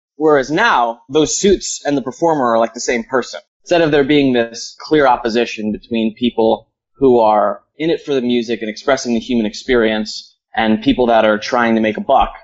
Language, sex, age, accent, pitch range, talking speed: English, male, 20-39, American, 110-125 Hz, 205 wpm